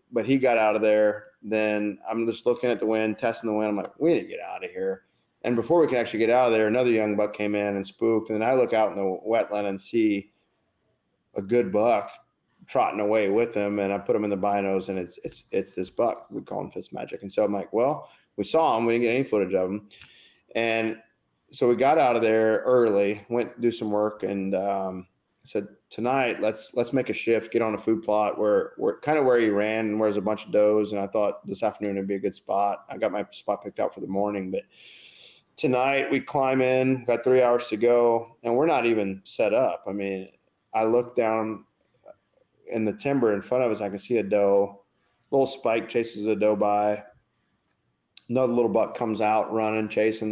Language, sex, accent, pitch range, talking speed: English, male, American, 105-120 Hz, 235 wpm